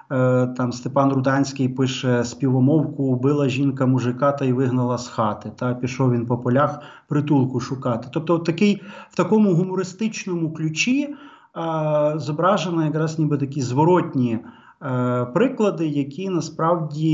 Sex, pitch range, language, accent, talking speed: male, 135-170 Hz, Ukrainian, native, 125 wpm